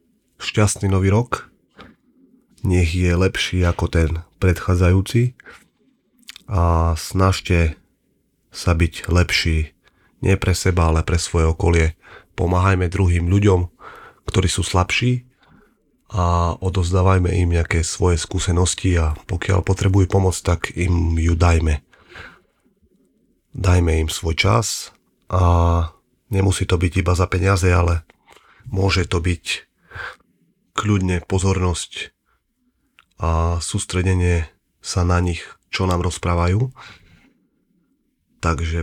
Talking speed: 105 wpm